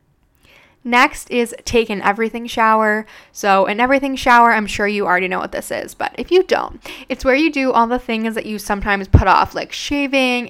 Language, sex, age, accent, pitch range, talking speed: English, female, 10-29, American, 205-255 Hz, 205 wpm